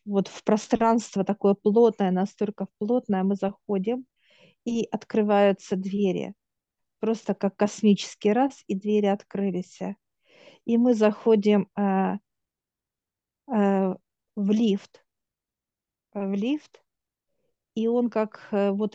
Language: Russian